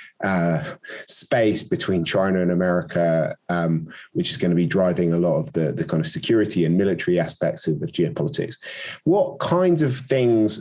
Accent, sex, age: British, male, 20-39